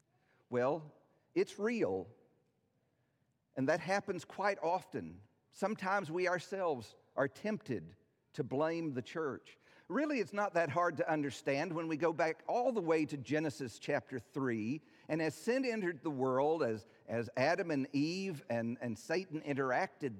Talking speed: 150 wpm